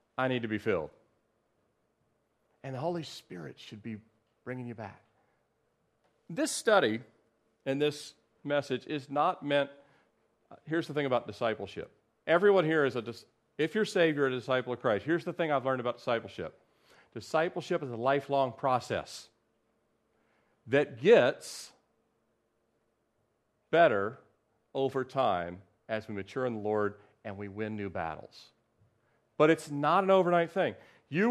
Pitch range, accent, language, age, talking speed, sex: 115-175 Hz, American, English, 40-59, 140 wpm, male